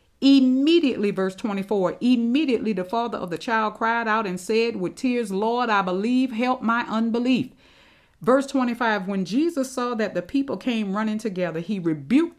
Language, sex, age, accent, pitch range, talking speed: English, female, 50-69, American, 175-240 Hz, 165 wpm